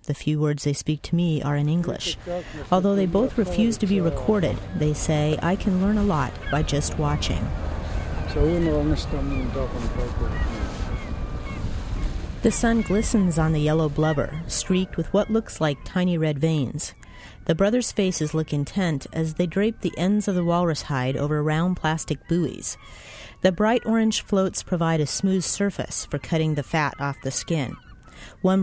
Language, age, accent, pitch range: English, 40-59, American, 140-180 Hz